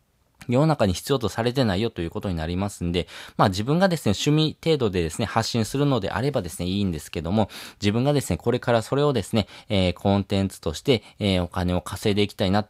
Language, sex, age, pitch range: Japanese, male, 20-39, 95-135 Hz